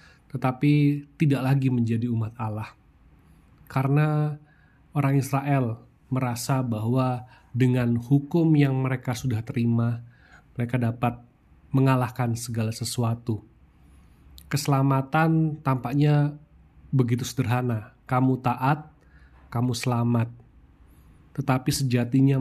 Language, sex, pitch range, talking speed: Indonesian, male, 115-135 Hz, 85 wpm